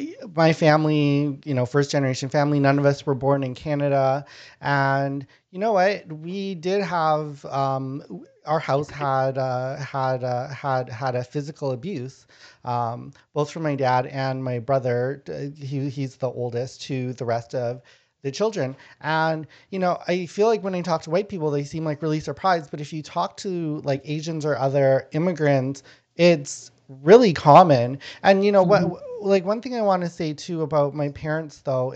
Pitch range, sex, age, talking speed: 135-165 Hz, male, 30-49, 180 wpm